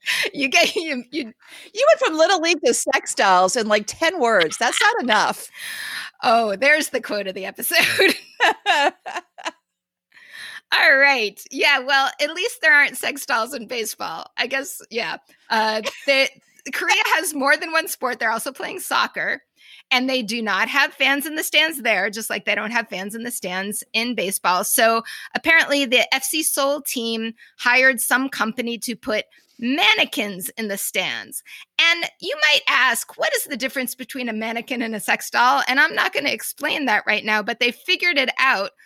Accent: American